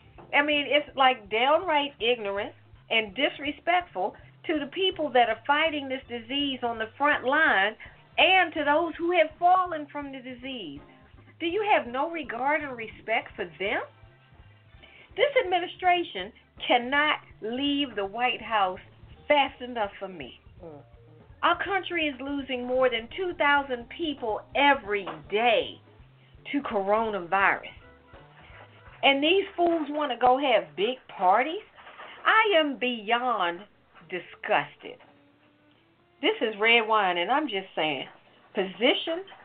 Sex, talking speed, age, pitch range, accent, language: female, 125 wpm, 50-69, 200-315 Hz, American, English